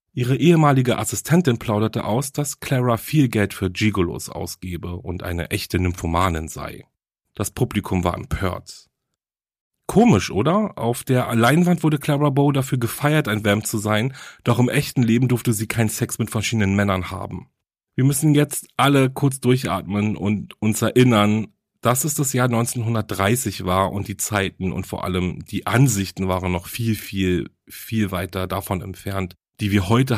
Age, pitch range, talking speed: 40-59, 95-125 Hz, 160 wpm